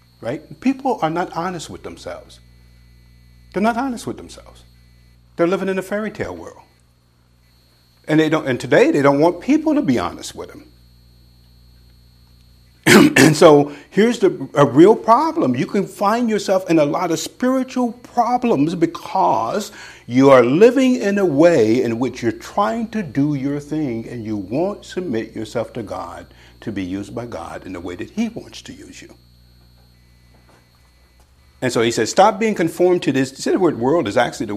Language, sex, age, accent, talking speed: English, male, 50-69, American, 175 wpm